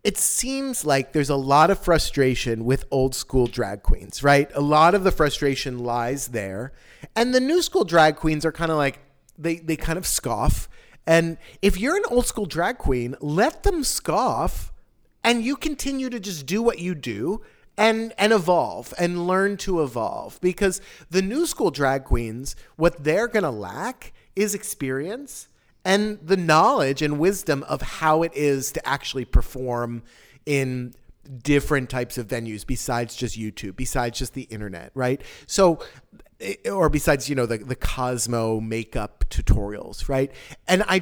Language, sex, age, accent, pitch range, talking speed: English, male, 40-59, American, 130-190 Hz, 165 wpm